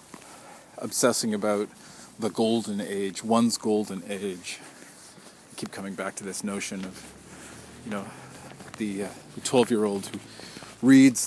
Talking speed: 130 wpm